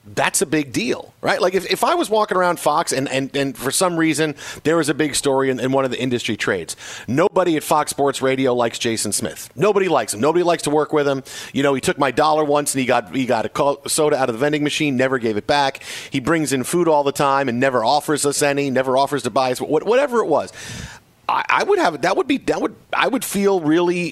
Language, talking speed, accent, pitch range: English, 260 wpm, American, 135-160 Hz